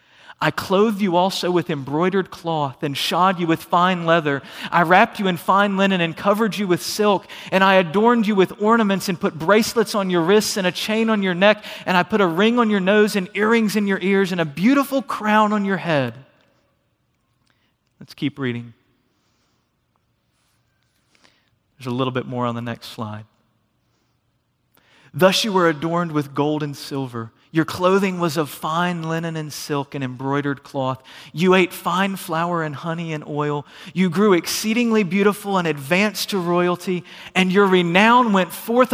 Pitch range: 150-205 Hz